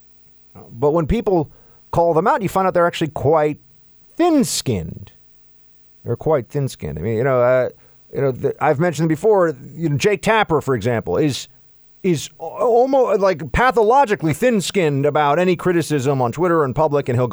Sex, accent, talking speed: male, American, 165 wpm